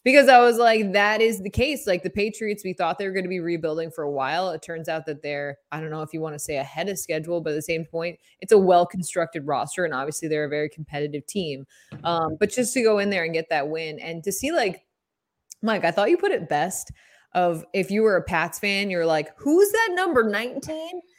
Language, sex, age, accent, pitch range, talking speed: English, female, 20-39, American, 160-220 Hz, 250 wpm